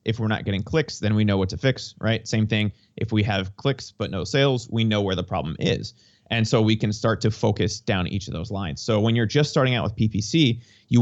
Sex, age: male, 30-49